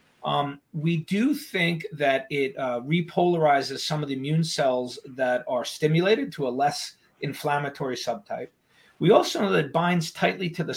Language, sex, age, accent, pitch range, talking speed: English, male, 40-59, American, 140-170 Hz, 165 wpm